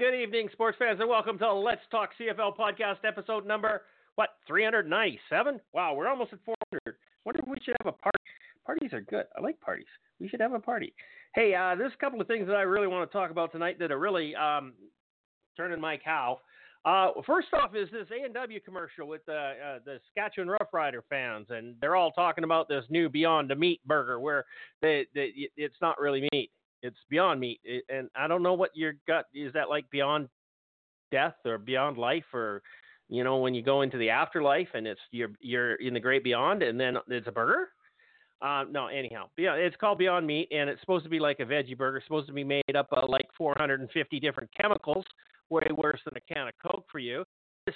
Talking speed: 215 wpm